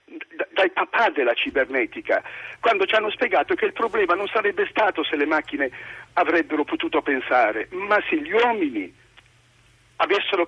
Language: Italian